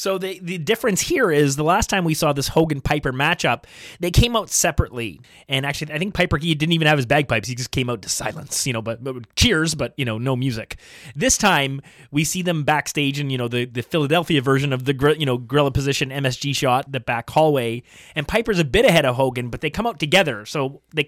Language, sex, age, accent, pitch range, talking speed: English, male, 30-49, American, 130-165 Hz, 235 wpm